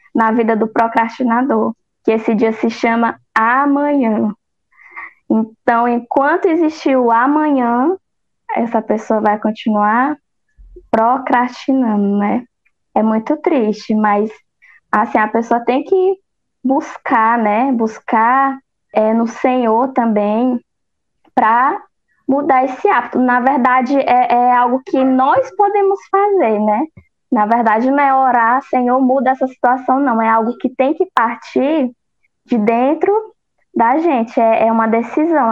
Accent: Brazilian